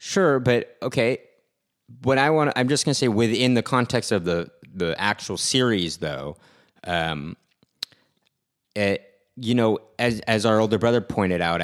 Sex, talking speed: male, 165 wpm